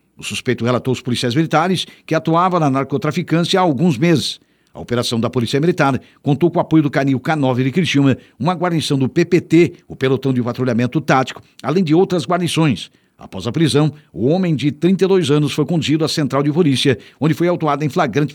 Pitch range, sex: 135-160 Hz, male